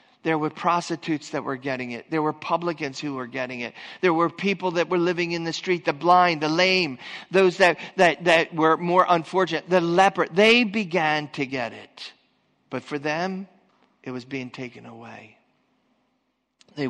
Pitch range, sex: 125-165 Hz, male